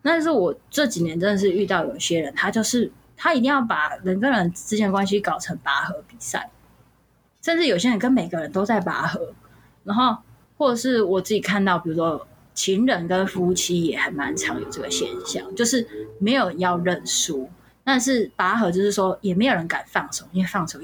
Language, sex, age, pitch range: Chinese, female, 20-39, 180-230 Hz